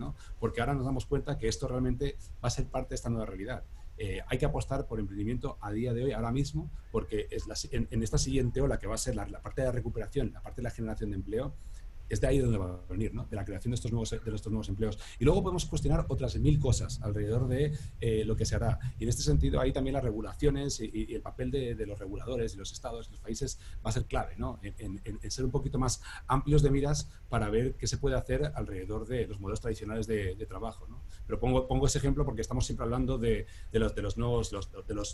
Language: Spanish